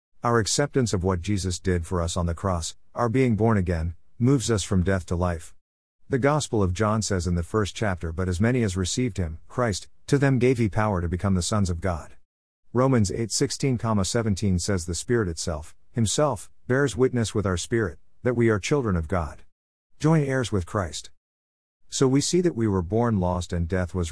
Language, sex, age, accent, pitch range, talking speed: English, male, 50-69, American, 85-115 Hz, 205 wpm